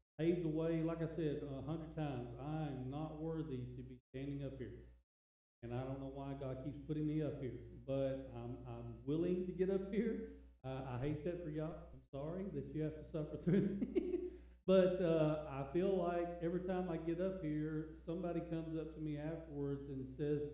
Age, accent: 50-69, American